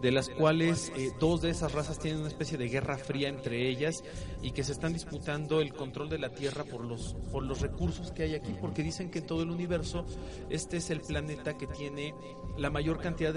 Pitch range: 130-165 Hz